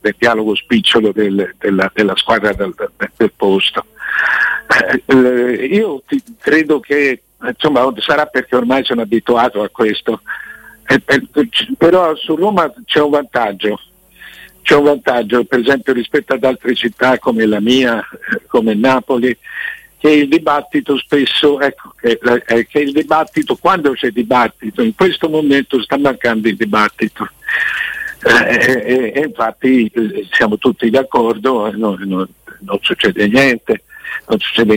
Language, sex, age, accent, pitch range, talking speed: Italian, male, 60-79, native, 115-150 Hz, 145 wpm